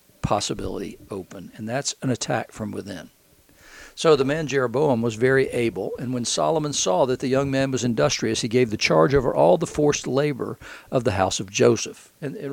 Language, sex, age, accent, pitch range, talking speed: English, male, 60-79, American, 120-140 Hz, 195 wpm